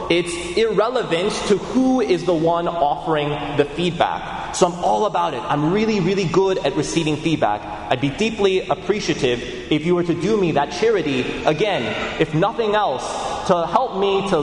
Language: English